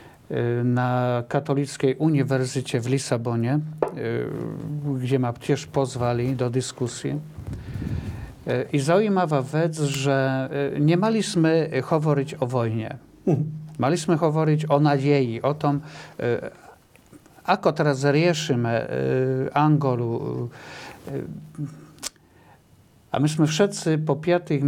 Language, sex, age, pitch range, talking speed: Slovak, male, 50-69, 130-155 Hz, 85 wpm